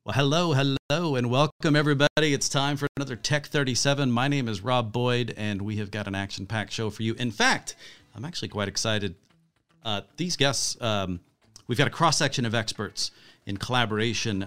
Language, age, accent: English, 40-59, American